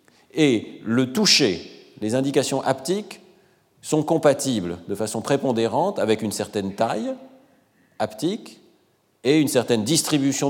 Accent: French